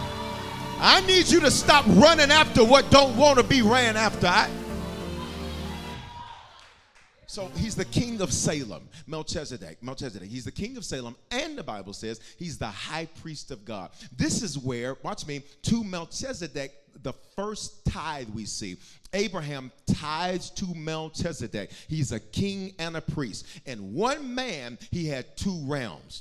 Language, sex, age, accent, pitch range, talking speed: English, male, 40-59, American, 135-195 Hz, 155 wpm